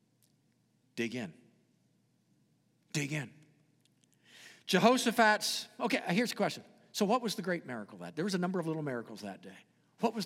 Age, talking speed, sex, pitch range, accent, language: 50-69, 160 wpm, male, 150-235 Hz, American, English